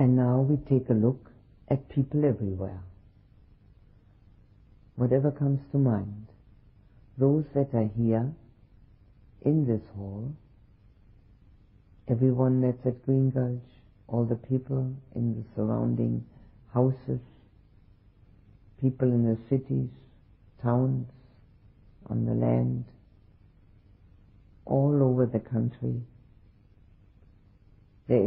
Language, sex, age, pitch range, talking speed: English, female, 50-69, 100-125 Hz, 95 wpm